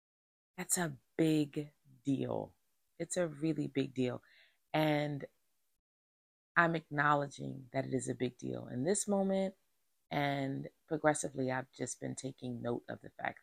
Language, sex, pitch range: English, female, 130-180 Hz